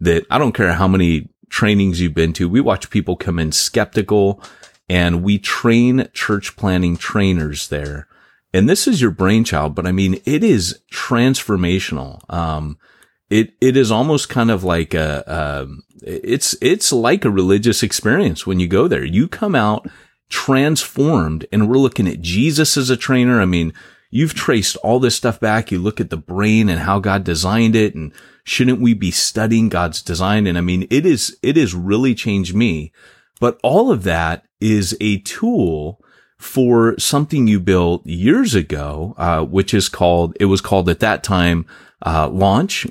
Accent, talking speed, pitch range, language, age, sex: American, 175 wpm, 85-110 Hz, English, 30-49, male